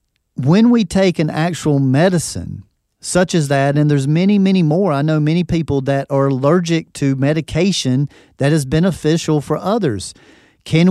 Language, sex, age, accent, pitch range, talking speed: English, male, 40-59, American, 135-175 Hz, 160 wpm